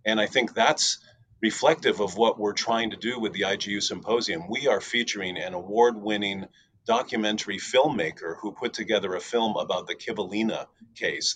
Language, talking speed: English, 165 wpm